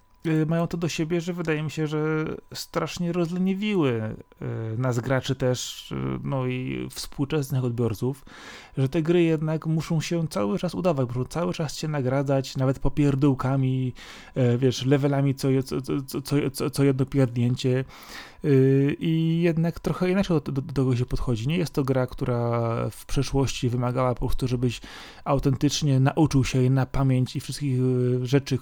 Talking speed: 155 wpm